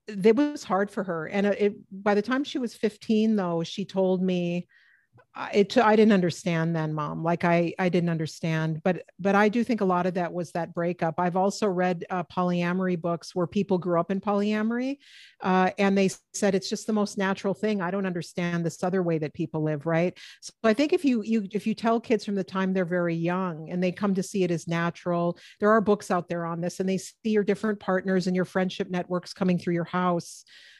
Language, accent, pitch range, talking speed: English, American, 180-210 Hz, 225 wpm